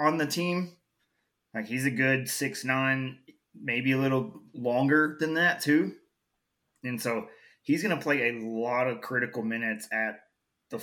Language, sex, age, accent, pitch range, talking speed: English, male, 20-39, American, 115-135 Hz, 155 wpm